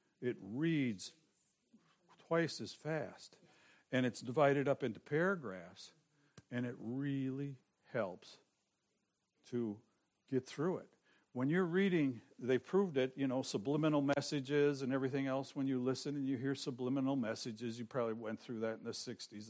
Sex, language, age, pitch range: male, English, 60-79, 115-145 Hz